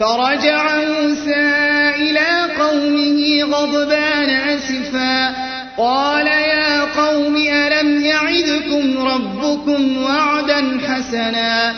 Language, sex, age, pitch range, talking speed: Arabic, male, 30-49, 260-300 Hz, 70 wpm